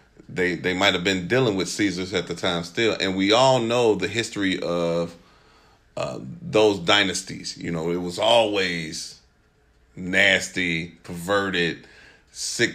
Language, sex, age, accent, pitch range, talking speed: English, male, 30-49, American, 85-110 Hz, 140 wpm